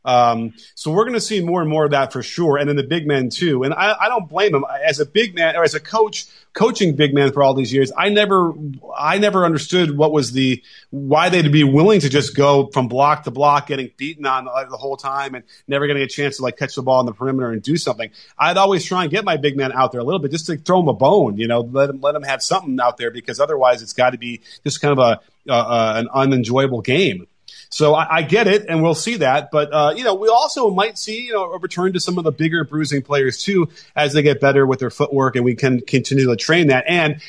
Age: 30-49